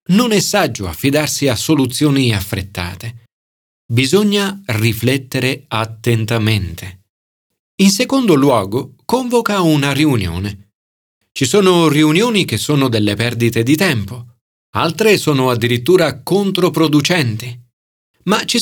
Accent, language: native, Italian